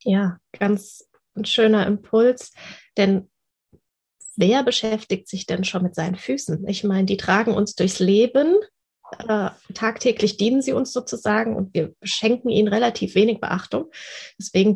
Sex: female